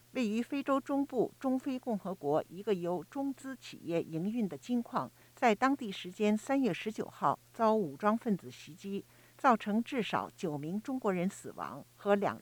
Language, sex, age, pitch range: Chinese, female, 50-69, 180-240 Hz